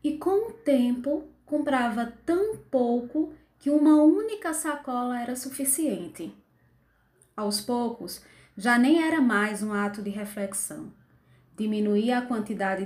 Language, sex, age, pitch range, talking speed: Portuguese, female, 20-39, 210-275 Hz, 120 wpm